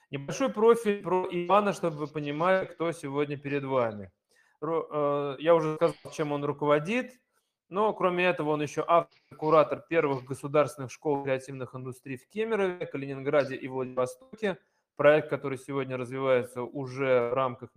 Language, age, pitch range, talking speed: Russian, 20-39, 130-175 Hz, 140 wpm